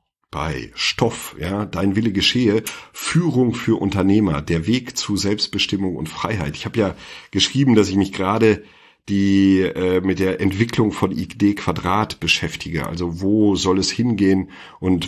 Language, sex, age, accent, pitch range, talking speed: German, male, 40-59, German, 90-105 Hz, 145 wpm